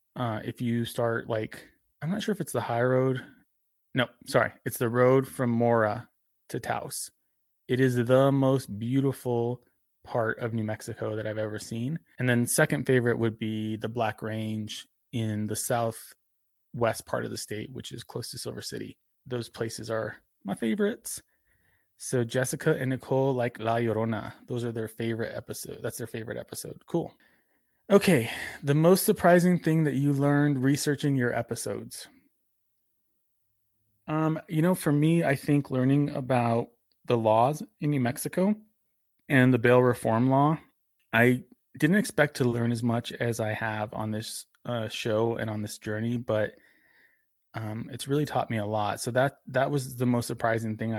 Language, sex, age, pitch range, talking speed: English, male, 20-39, 110-135 Hz, 170 wpm